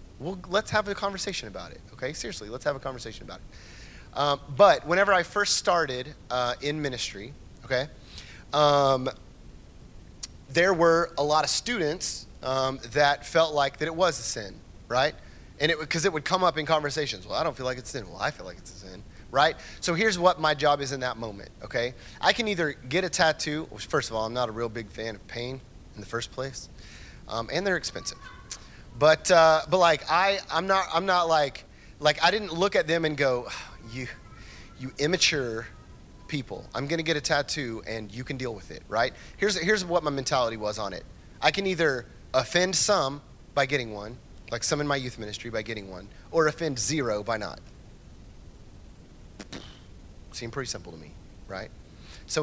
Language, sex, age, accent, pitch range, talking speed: English, male, 30-49, American, 115-160 Hz, 200 wpm